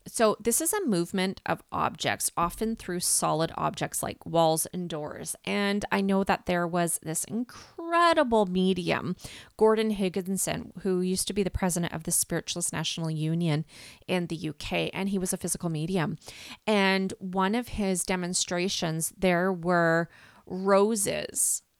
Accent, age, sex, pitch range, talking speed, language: American, 30-49, female, 175-200 Hz, 150 wpm, English